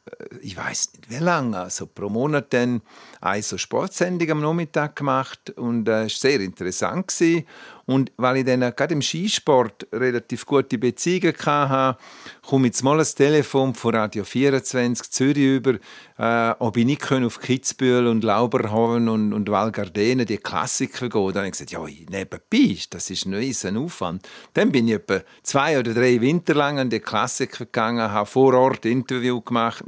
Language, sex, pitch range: German, male, 110-135 Hz